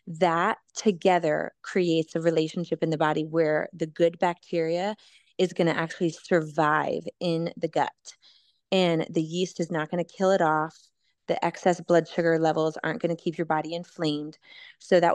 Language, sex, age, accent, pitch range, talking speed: English, female, 20-39, American, 165-190 Hz, 175 wpm